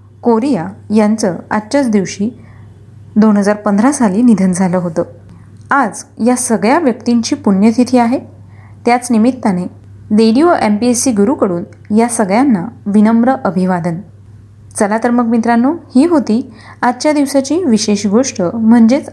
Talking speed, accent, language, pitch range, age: 110 wpm, native, Marathi, 195-255 Hz, 30-49